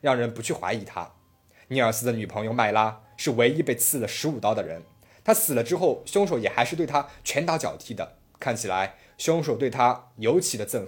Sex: male